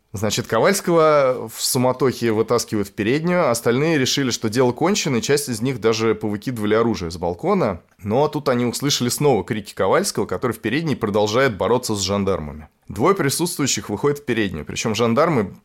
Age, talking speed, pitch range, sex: 20-39, 160 wpm, 100-130 Hz, male